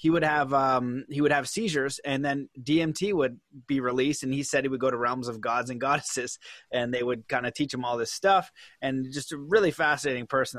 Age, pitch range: 20-39, 135-170 Hz